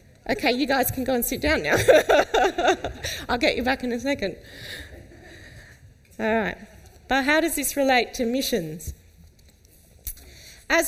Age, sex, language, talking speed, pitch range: 30-49, female, English, 145 wpm, 220-330 Hz